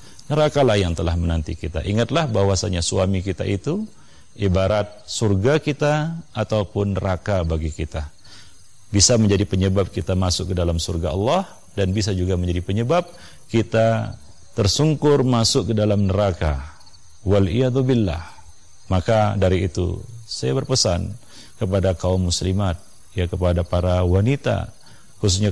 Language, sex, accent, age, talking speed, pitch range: Indonesian, male, native, 40-59, 120 wpm, 90-110 Hz